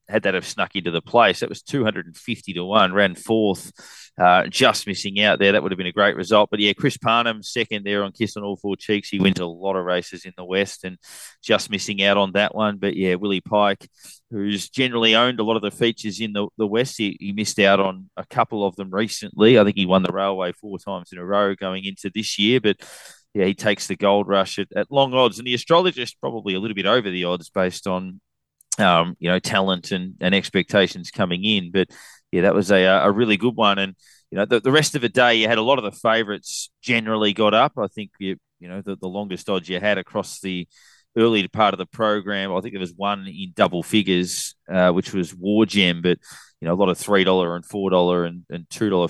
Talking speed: 240 wpm